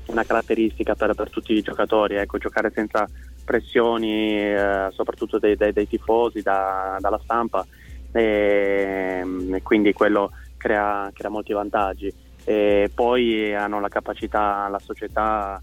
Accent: native